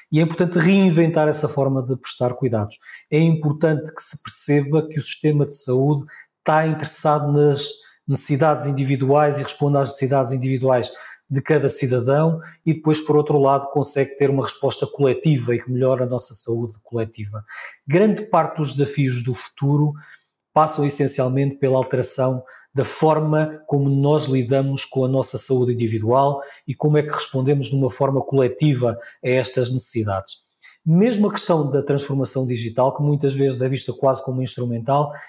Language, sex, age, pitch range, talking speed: Portuguese, male, 20-39, 130-155 Hz, 160 wpm